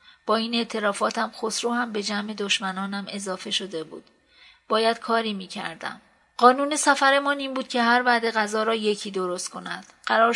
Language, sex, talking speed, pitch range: Persian, female, 160 wpm, 200-235 Hz